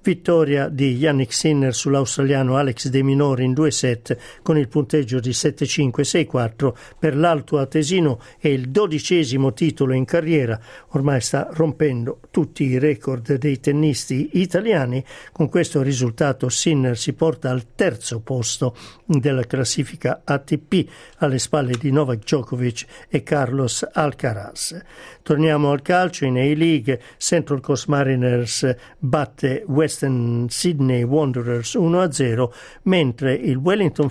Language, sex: Italian, male